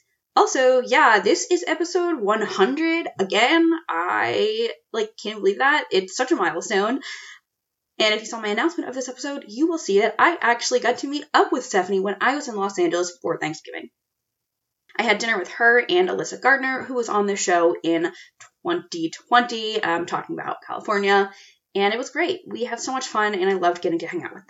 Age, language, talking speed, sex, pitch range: 20-39, English, 200 wpm, female, 195-320 Hz